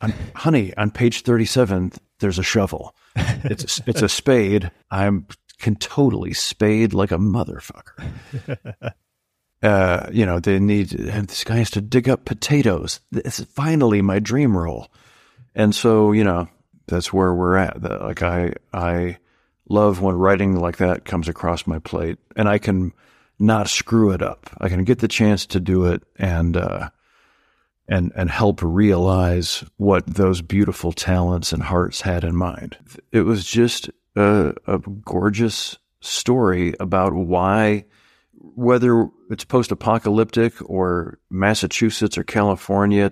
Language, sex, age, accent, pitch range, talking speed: English, male, 50-69, American, 90-110 Hz, 145 wpm